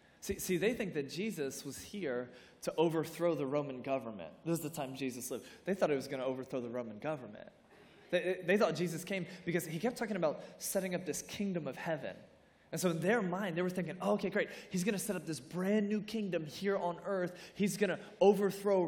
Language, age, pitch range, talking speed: English, 20-39, 145-195 Hz, 225 wpm